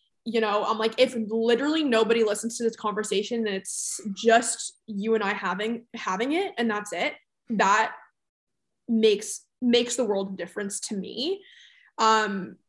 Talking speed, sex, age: 155 wpm, female, 20-39